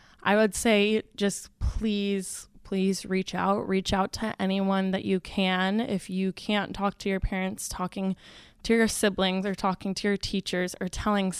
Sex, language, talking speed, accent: female, English, 175 wpm, American